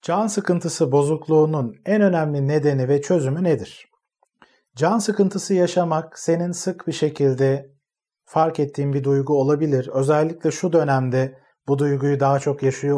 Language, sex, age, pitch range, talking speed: Turkish, male, 40-59, 130-165 Hz, 135 wpm